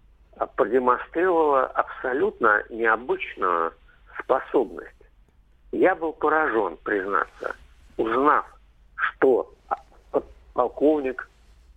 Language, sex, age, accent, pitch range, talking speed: Russian, male, 50-69, native, 370-435 Hz, 55 wpm